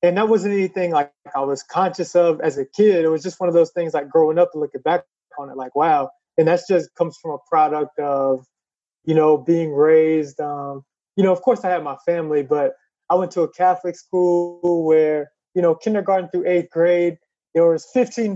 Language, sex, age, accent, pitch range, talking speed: English, male, 20-39, American, 165-195 Hz, 220 wpm